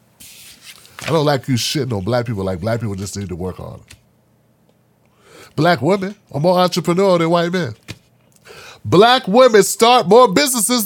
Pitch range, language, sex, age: 150-210 Hz, English, male, 30-49